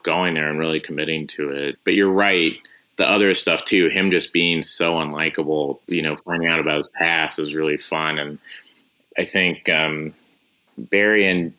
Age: 30-49